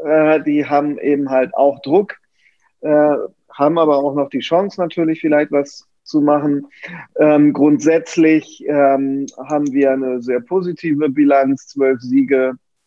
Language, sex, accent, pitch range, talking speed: German, male, German, 140-170 Hz, 120 wpm